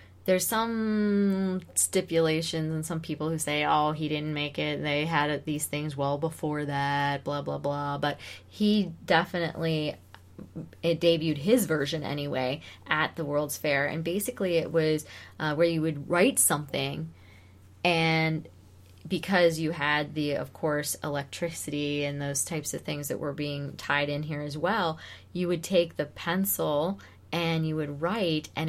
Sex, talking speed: female, 160 wpm